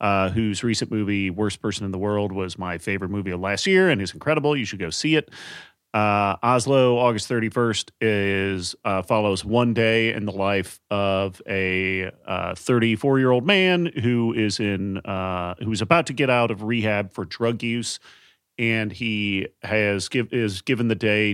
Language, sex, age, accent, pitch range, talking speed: English, male, 40-59, American, 100-115 Hz, 190 wpm